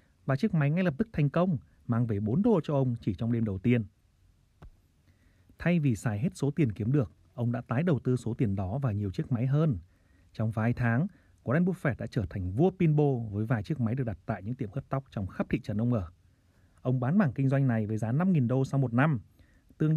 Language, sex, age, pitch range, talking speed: Vietnamese, male, 30-49, 105-145 Hz, 245 wpm